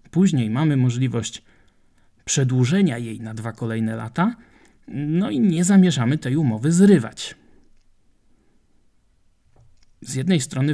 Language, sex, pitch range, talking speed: Polish, male, 115-140 Hz, 105 wpm